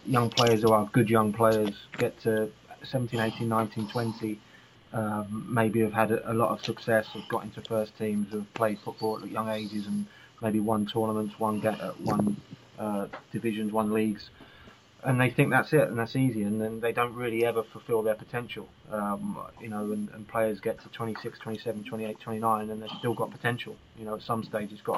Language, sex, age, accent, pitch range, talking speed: English, male, 20-39, British, 105-115 Hz, 210 wpm